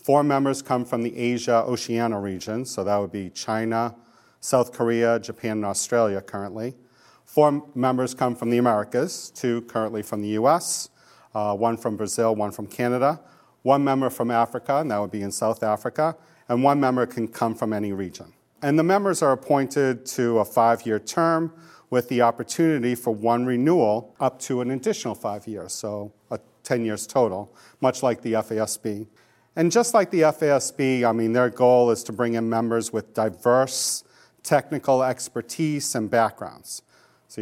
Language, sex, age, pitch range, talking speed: English, male, 40-59, 115-130 Hz, 170 wpm